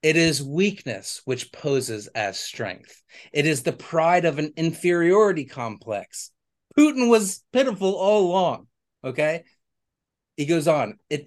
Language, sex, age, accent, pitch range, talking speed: English, male, 30-49, American, 115-155 Hz, 135 wpm